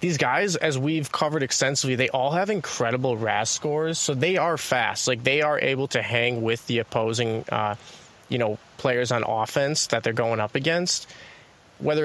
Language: English